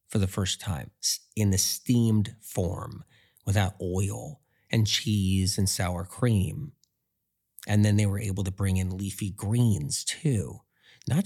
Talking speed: 145 wpm